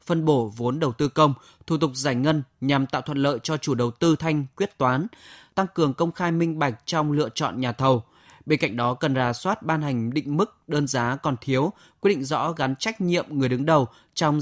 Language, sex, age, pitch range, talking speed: Vietnamese, male, 20-39, 130-165 Hz, 235 wpm